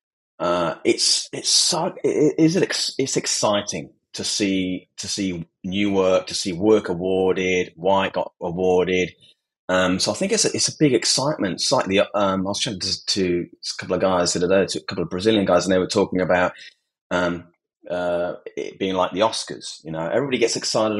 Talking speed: 200 wpm